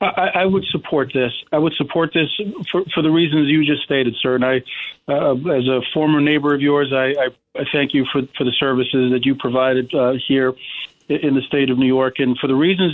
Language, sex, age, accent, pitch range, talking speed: English, male, 40-59, American, 130-155 Hz, 230 wpm